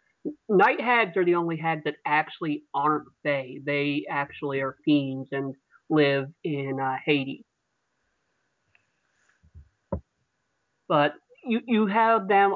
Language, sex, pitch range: English, male, 140-165 Hz